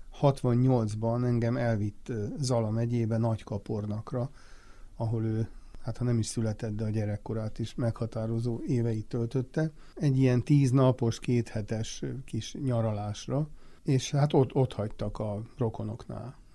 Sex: male